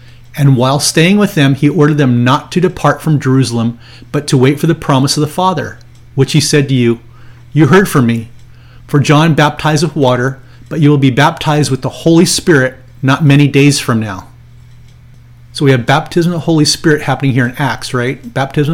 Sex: male